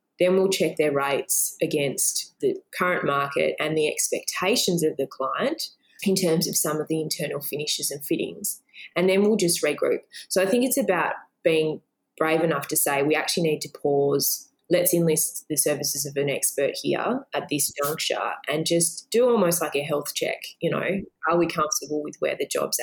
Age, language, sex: 20-39, English, female